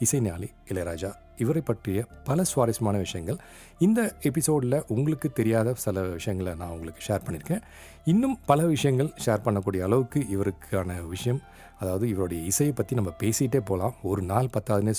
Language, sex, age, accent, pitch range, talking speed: Tamil, male, 40-59, native, 90-130 Hz, 140 wpm